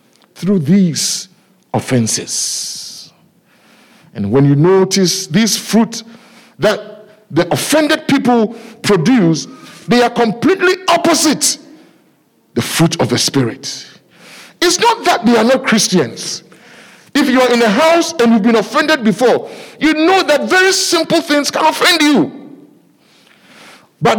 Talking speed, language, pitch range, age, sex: 125 wpm, English, 180-265 Hz, 50-69, male